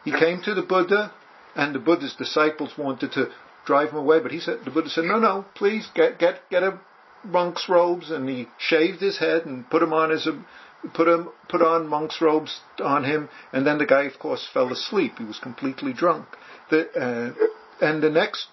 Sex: male